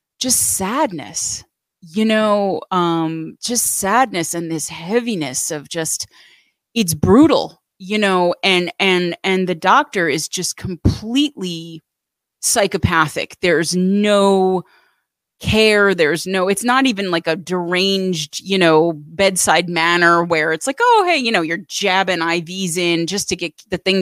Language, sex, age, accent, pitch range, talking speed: English, female, 30-49, American, 170-210 Hz, 140 wpm